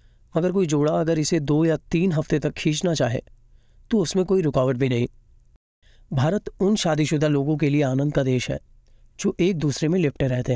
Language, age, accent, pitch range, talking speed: Hindi, 30-49, native, 135-170 Hz, 195 wpm